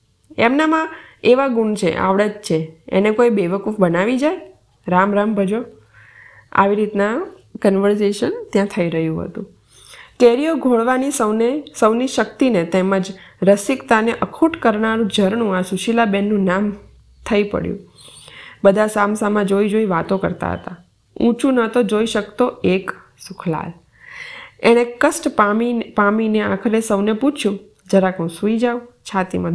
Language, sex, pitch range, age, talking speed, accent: Gujarati, female, 190-230 Hz, 20-39, 120 wpm, native